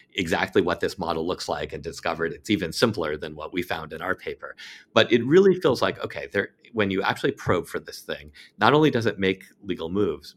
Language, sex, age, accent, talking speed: English, male, 40-59, American, 225 wpm